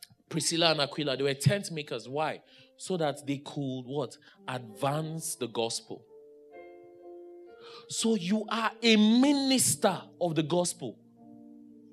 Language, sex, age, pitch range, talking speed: English, male, 30-49, 135-215 Hz, 120 wpm